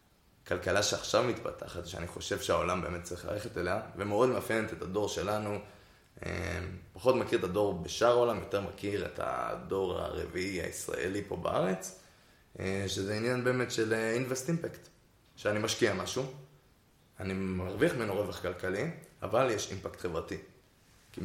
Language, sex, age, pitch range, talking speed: Hebrew, male, 20-39, 90-105 Hz, 135 wpm